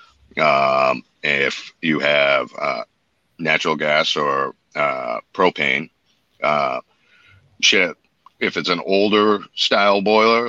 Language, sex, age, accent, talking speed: English, male, 50-69, American, 105 wpm